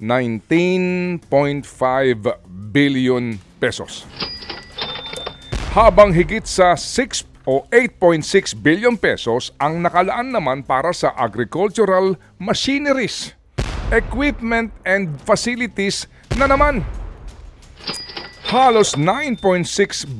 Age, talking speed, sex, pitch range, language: 50-69, 75 wpm, male, 125-210 Hz, Filipino